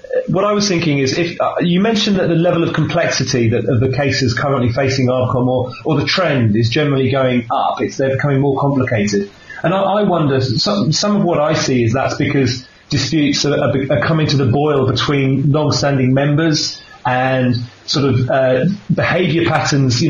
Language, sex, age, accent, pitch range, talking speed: English, male, 30-49, British, 125-155 Hz, 195 wpm